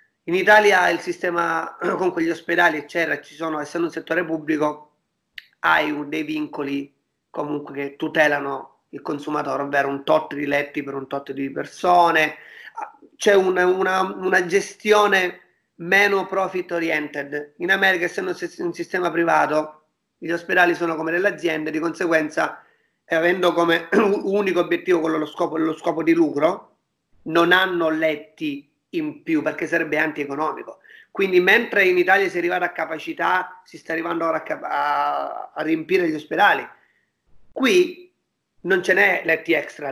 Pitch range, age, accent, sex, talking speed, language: 155-190 Hz, 30-49, native, male, 150 wpm, Italian